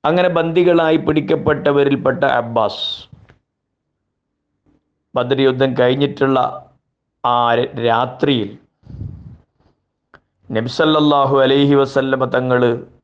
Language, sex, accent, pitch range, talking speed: Malayalam, male, native, 120-145 Hz, 60 wpm